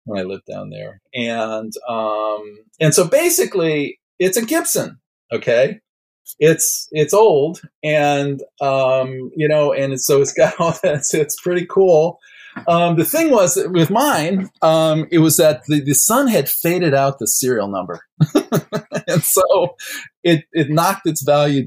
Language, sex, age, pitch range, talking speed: English, male, 40-59, 125-170 Hz, 160 wpm